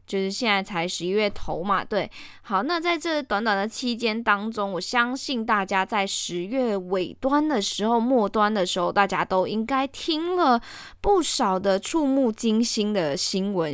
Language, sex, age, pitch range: Chinese, female, 10-29, 180-240 Hz